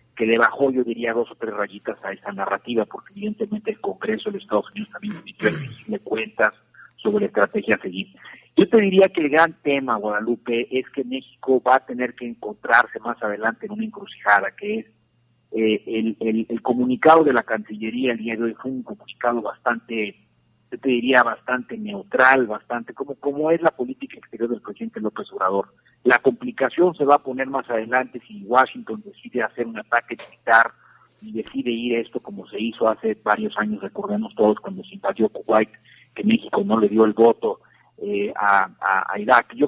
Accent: Mexican